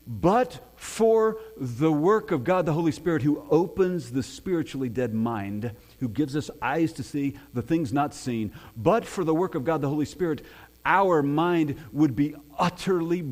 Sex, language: male, English